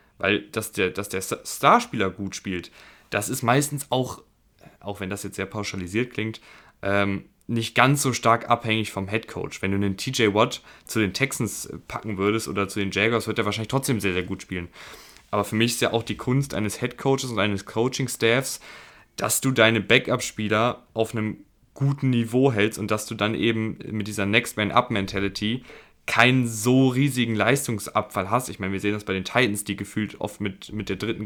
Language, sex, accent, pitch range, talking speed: German, male, German, 100-120 Hz, 190 wpm